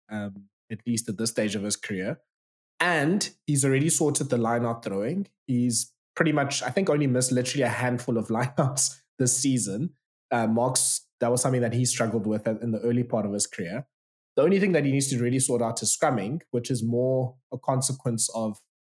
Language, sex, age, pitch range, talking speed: English, male, 20-39, 110-130 Hz, 205 wpm